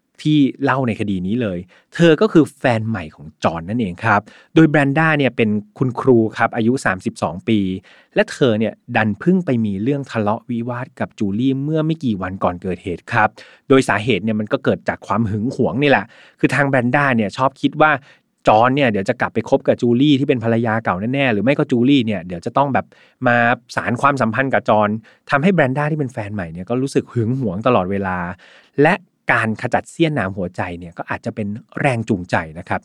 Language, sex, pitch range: Thai, male, 105-140 Hz